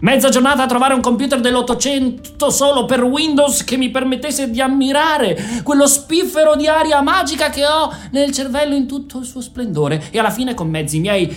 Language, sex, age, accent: Italian, male, 30-49, native